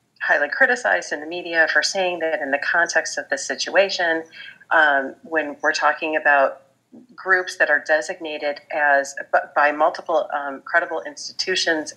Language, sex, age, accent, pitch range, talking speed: English, female, 40-59, American, 140-170 Hz, 145 wpm